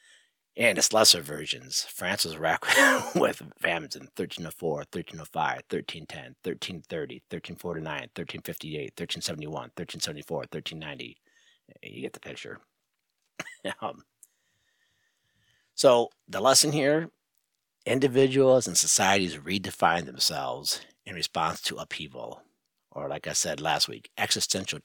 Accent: American